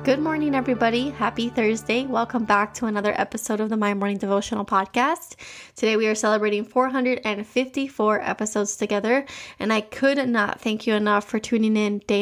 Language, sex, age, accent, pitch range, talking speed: English, female, 20-39, American, 205-235 Hz, 165 wpm